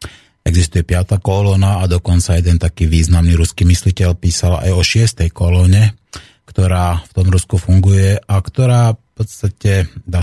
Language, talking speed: Slovak, 145 wpm